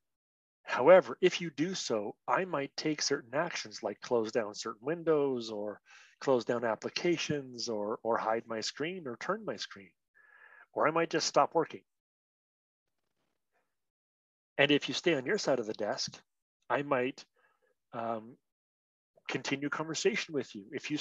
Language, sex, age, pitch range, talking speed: English, male, 40-59, 120-160 Hz, 150 wpm